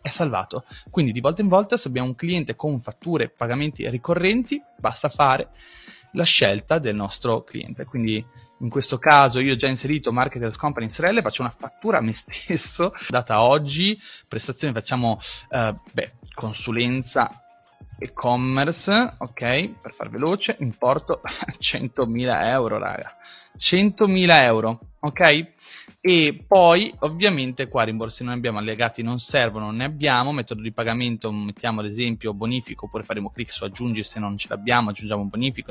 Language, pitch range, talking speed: Italian, 110-155 Hz, 155 wpm